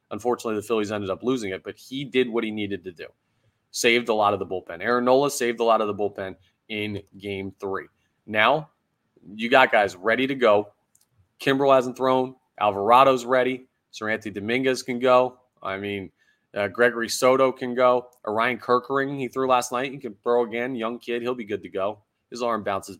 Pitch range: 100-125 Hz